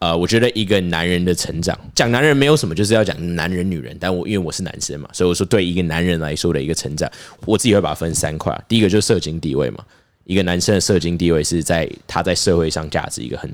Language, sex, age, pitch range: Chinese, male, 10-29, 80-100 Hz